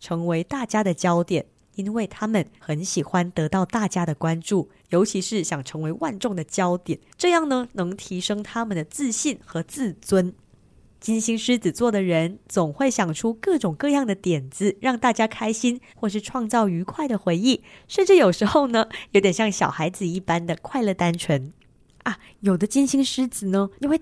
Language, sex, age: Chinese, female, 20-39